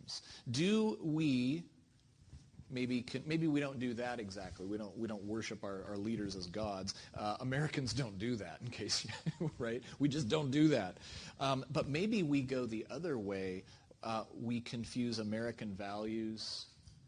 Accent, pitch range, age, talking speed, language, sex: American, 105-135 Hz, 40-59, 160 wpm, English, male